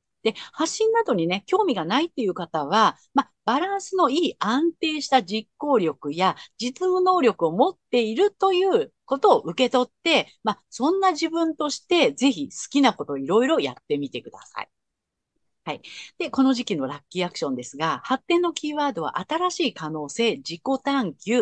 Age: 50-69